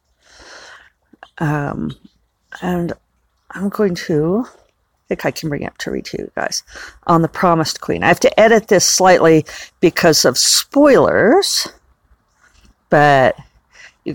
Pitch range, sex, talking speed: 155-210 Hz, female, 135 wpm